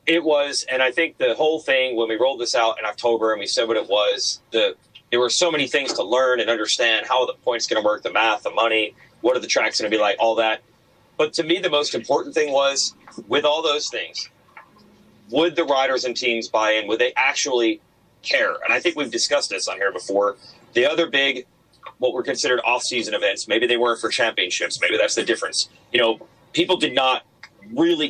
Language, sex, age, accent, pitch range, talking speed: English, male, 30-49, American, 120-165 Hz, 225 wpm